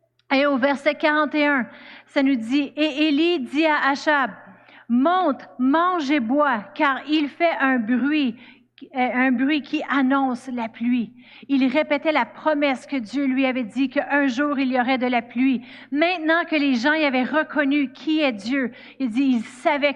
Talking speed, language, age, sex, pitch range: 175 wpm, French, 40-59, female, 260-305 Hz